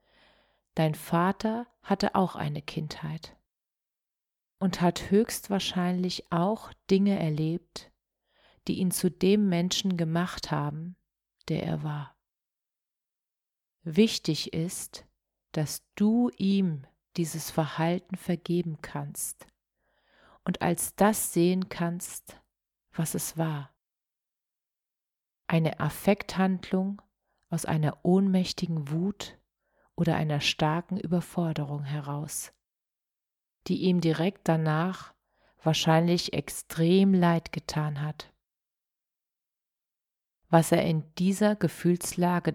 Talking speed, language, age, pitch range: 90 wpm, German, 40-59, 160-190 Hz